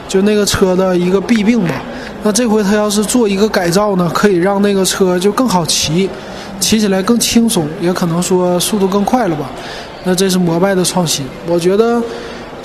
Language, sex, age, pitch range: Chinese, male, 20-39, 180-215 Hz